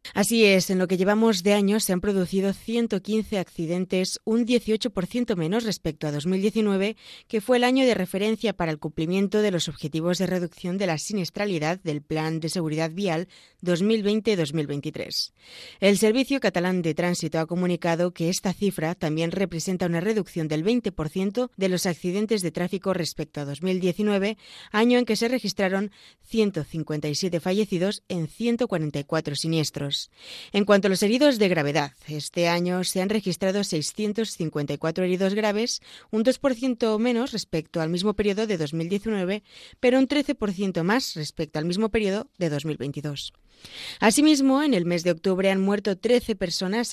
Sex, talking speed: female, 155 wpm